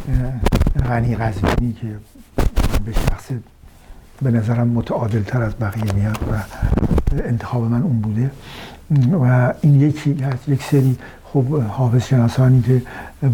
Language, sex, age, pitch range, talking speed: Persian, male, 60-79, 115-135 Hz, 115 wpm